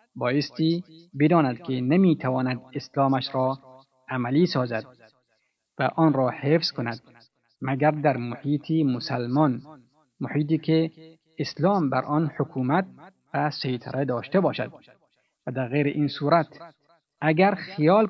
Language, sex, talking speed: Persian, male, 115 wpm